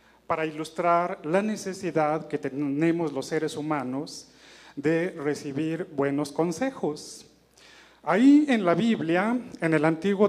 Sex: male